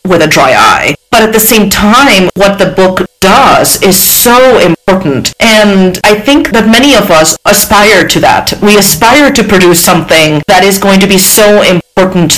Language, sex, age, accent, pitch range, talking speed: English, female, 40-59, American, 175-225 Hz, 185 wpm